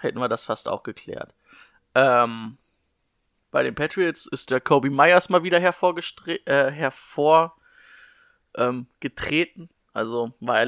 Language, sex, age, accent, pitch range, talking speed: German, male, 20-39, German, 125-145 Hz, 125 wpm